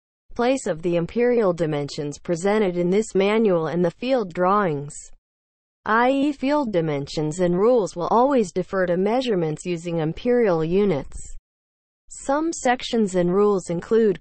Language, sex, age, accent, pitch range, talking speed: English, female, 40-59, American, 160-220 Hz, 135 wpm